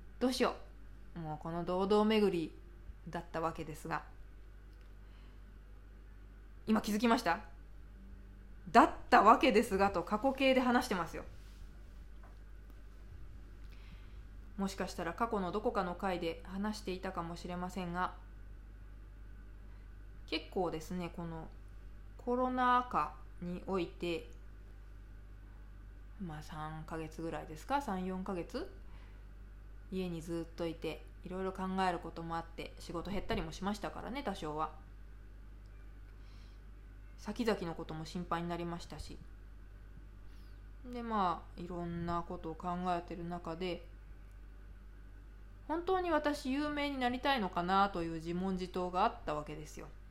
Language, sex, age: Japanese, female, 20-39